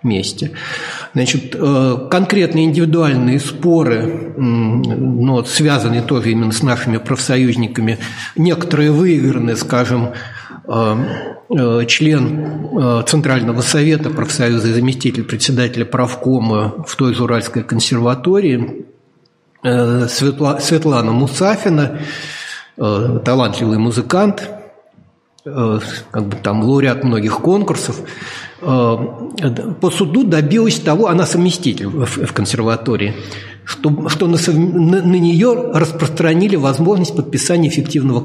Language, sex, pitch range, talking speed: Russian, male, 120-165 Hz, 85 wpm